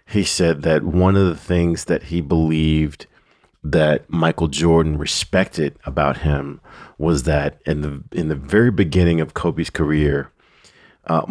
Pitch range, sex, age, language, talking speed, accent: 75-85 Hz, male, 40-59, English, 150 wpm, American